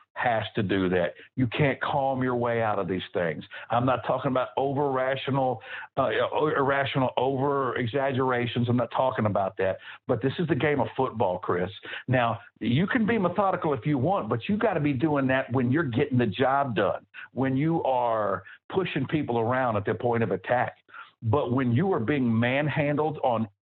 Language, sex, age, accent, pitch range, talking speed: English, male, 60-79, American, 120-155 Hz, 190 wpm